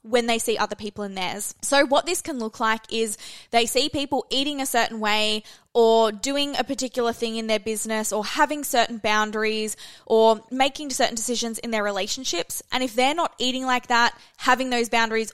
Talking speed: 195 wpm